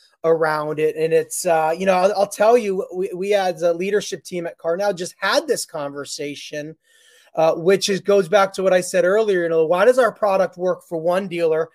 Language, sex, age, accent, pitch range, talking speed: English, male, 30-49, American, 155-185 Hz, 215 wpm